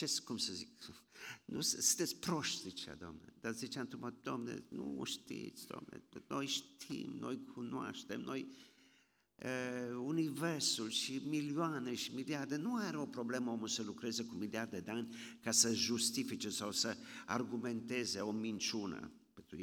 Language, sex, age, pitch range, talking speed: Romanian, male, 50-69, 115-155 Hz, 140 wpm